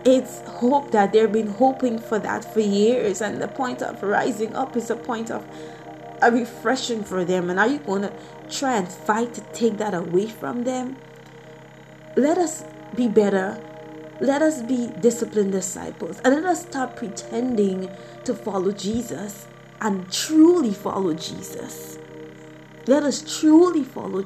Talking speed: 155 wpm